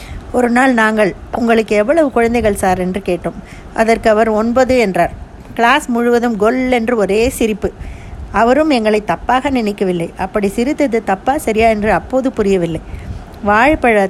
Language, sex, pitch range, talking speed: Tamil, female, 195-240 Hz, 130 wpm